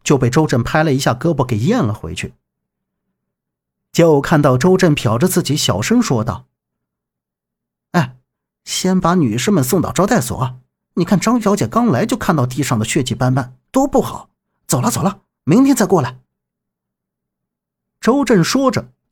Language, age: Chinese, 50-69